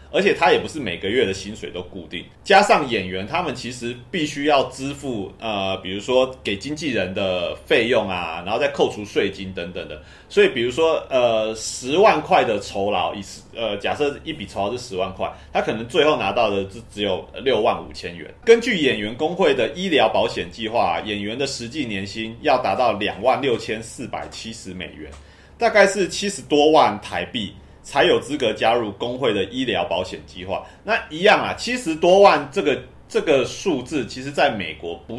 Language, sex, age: Chinese, male, 30-49